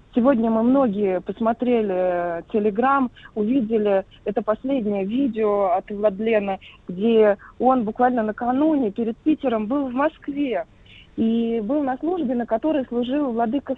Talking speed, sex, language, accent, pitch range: 120 wpm, female, Russian, native, 220-265 Hz